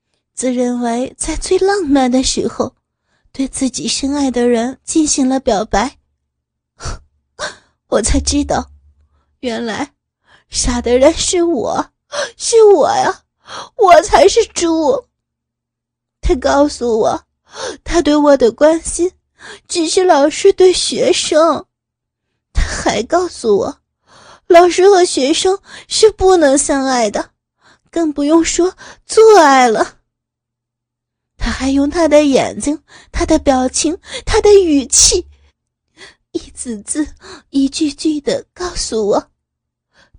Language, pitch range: Chinese, 230-340 Hz